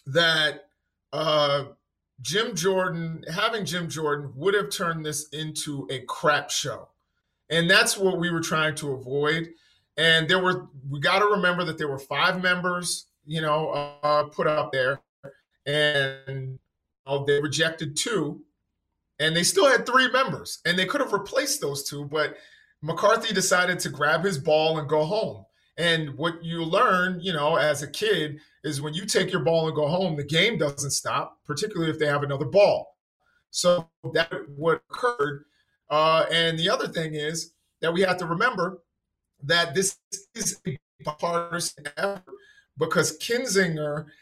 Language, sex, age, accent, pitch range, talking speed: English, male, 40-59, American, 150-190 Hz, 165 wpm